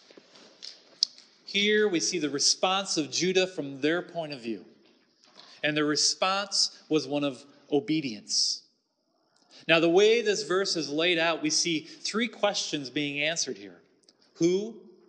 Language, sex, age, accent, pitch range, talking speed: English, male, 40-59, American, 150-195 Hz, 140 wpm